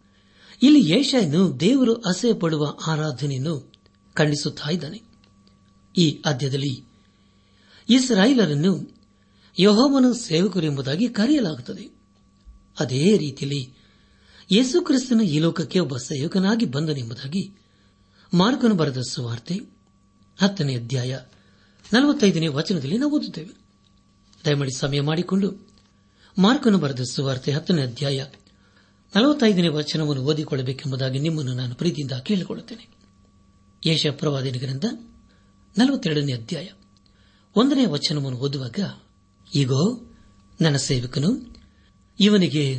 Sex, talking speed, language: male, 75 wpm, Kannada